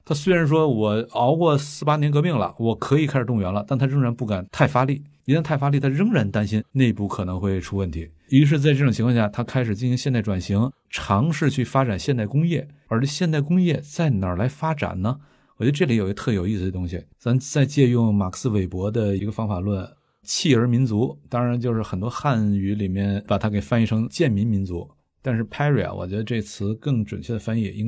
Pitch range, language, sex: 105-140 Hz, Chinese, male